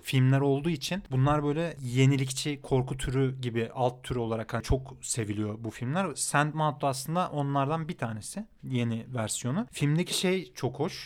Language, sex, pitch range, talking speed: Turkish, male, 125-140 Hz, 150 wpm